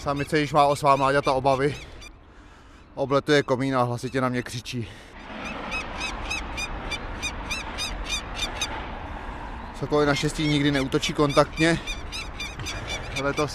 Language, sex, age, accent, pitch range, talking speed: Czech, male, 20-39, native, 90-140 Hz, 90 wpm